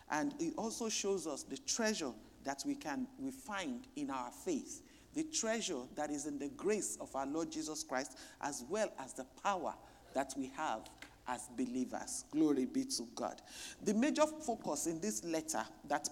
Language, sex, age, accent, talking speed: English, male, 50-69, Nigerian, 175 wpm